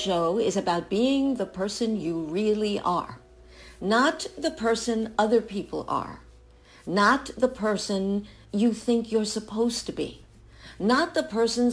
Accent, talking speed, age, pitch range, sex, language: American, 140 wpm, 60-79, 160-220 Hz, female, English